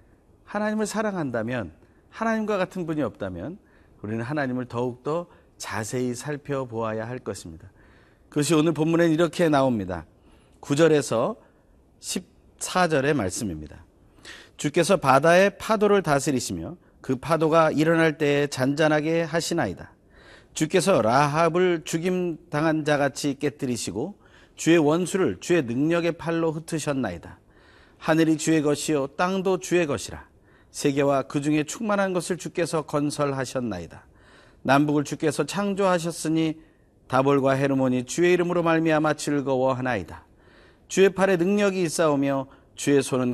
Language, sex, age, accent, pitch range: Korean, male, 40-59, native, 120-170 Hz